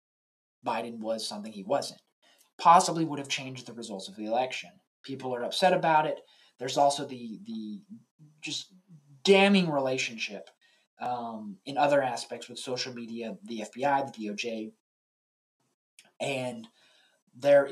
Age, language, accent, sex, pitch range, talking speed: 20-39, English, American, male, 120-170 Hz, 130 wpm